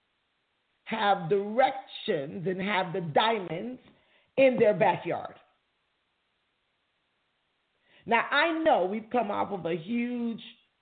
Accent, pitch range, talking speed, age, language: American, 210-280 Hz, 100 wpm, 40-59, English